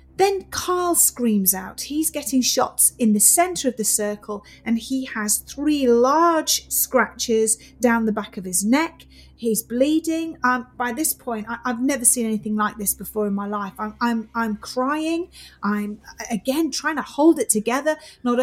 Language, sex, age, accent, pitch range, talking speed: English, female, 30-49, British, 210-280 Hz, 175 wpm